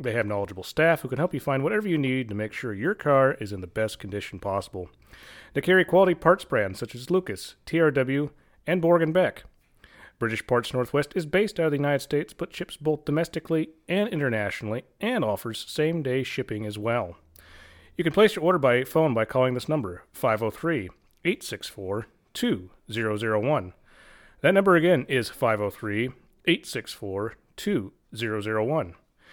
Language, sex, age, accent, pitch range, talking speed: English, male, 30-49, American, 110-160 Hz, 150 wpm